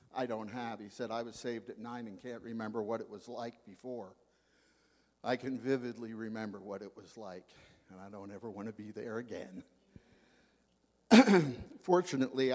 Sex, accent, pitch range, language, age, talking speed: male, American, 95-130 Hz, English, 50-69, 170 wpm